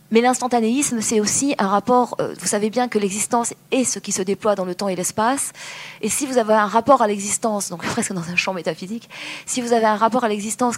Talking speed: 240 wpm